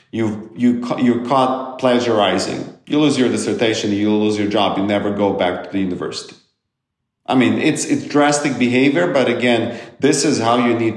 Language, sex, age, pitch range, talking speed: Ukrainian, male, 40-59, 105-125 Hz, 185 wpm